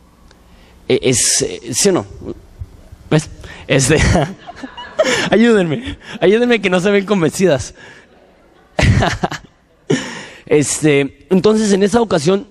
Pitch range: 130-170 Hz